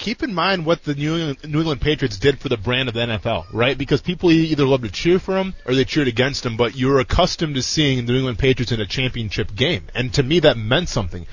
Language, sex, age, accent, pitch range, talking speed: English, male, 20-39, American, 130-170 Hz, 260 wpm